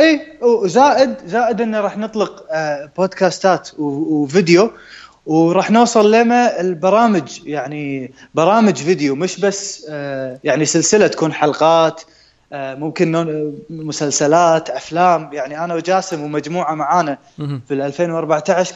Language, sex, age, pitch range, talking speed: Arabic, male, 20-39, 155-205 Hz, 100 wpm